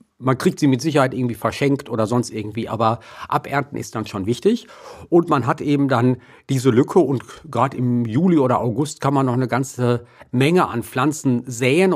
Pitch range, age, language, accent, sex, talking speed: 115-135 Hz, 50-69, German, German, male, 190 wpm